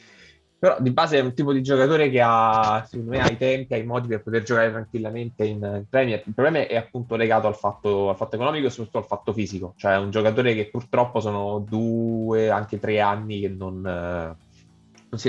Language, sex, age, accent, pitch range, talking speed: Italian, male, 20-39, native, 95-120 Hz, 220 wpm